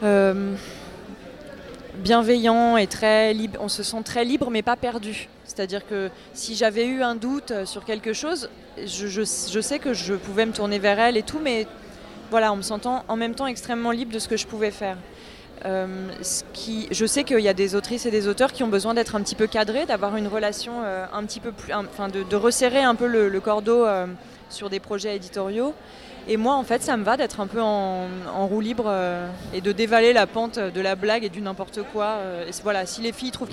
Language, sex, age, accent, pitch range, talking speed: French, female, 20-39, French, 195-230 Hz, 230 wpm